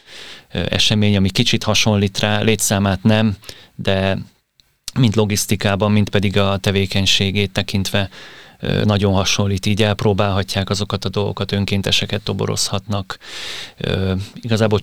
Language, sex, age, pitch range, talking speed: Hungarian, male, 30-49, 100-105 Hz, 100 wpm